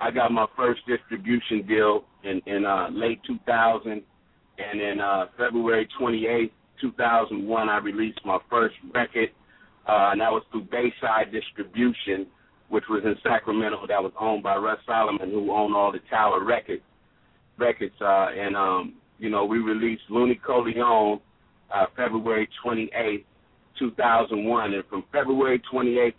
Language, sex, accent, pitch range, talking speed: English, male, American, 105-120 Hz, 145 wpm